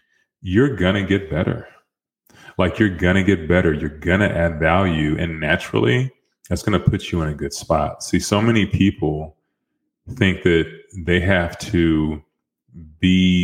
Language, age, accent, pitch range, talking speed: English, 30-49, American, 80-90 Hz, 165 wpm